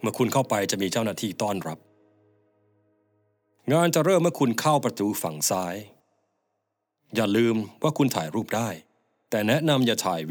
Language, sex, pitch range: Thai, male, 95-115 Hz